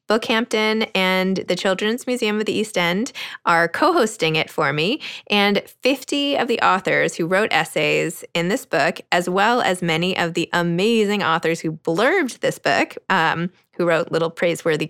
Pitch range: 185-235 Hz